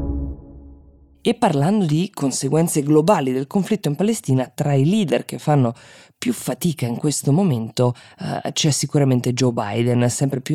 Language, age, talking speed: Italian, 20-39, 150 wpm